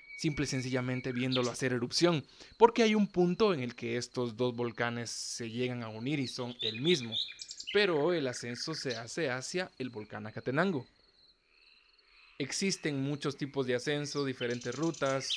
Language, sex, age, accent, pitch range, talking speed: Spanish, male, 20-39, Mexican, 120-165 Hz, 155 wpm